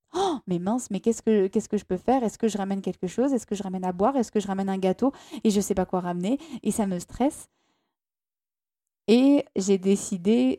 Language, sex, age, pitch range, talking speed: French, female, 20-39, 195-235 Hz, 255 wpm